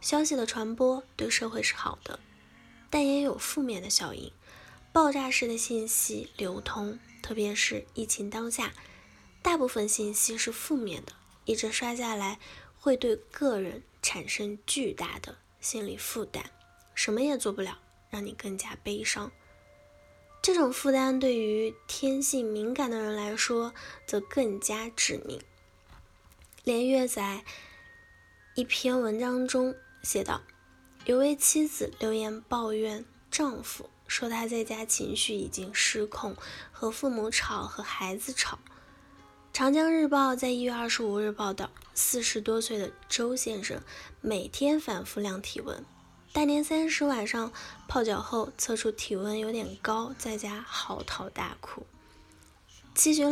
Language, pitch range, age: Chinese, 210-260 Hz, 10-29